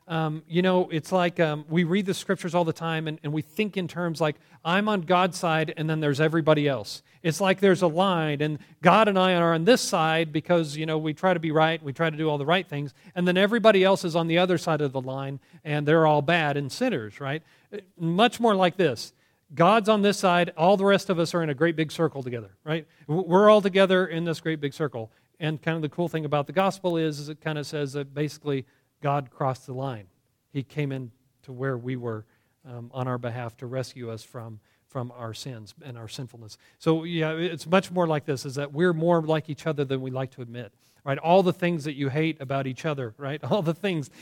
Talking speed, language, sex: 245 wpm, English, male